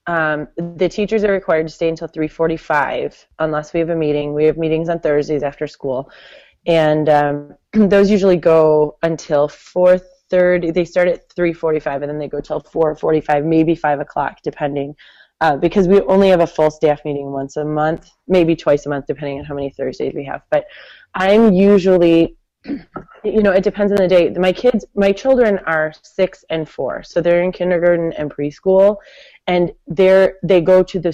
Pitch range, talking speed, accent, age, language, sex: 155-190 Hz, 180 wpm, American, 20-39, English, female